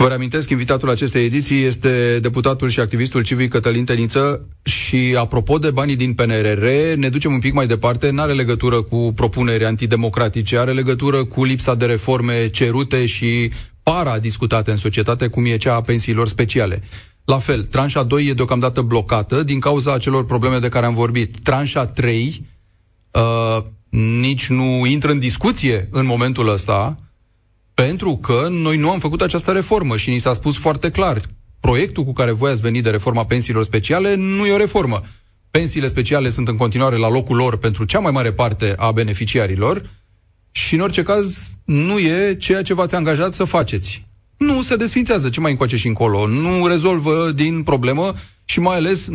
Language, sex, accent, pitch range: Romanian, male, native, 115-145 Hz